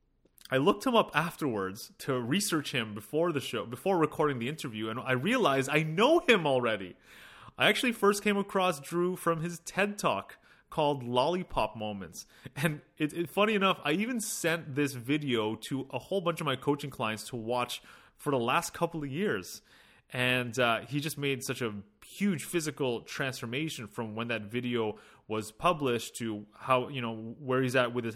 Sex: male